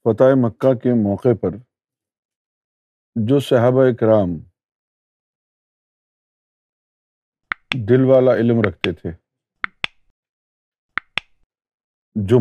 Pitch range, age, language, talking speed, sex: 110-135 Hz, 50-69, Urdu, 70 wpm, male